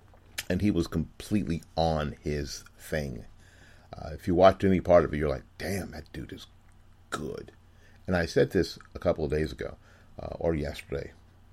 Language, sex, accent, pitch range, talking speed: English, male, American, 80-100 Hz, 175 wpm